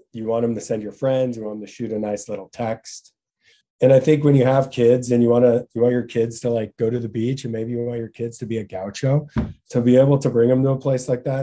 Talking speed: 305 wpm